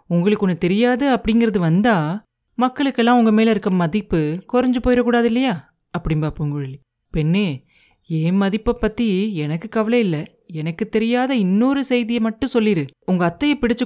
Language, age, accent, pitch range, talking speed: Tamil, 30-49, native, 165-230 Hz, 135 wpm